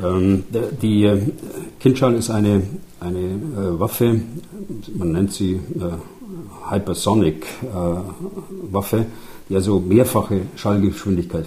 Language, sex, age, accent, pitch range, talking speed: German, male, 50-69, German, 90-110 Hz, 80 wpm